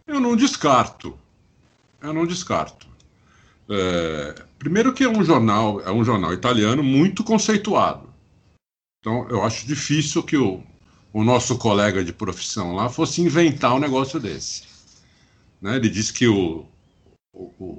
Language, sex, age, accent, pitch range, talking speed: Portuguese, male, 50-69, Brazilian, 95-150 Hz, 140 wpm